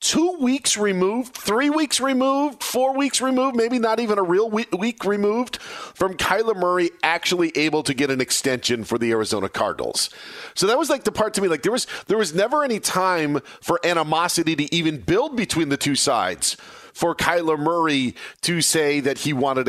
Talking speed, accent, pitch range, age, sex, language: 190 wpm, American, 155-220 Hz, 40-59, male, English